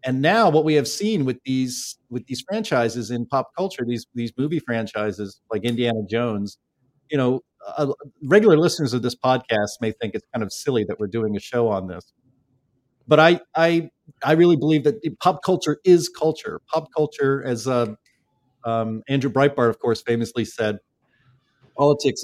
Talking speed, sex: 175 wpm, male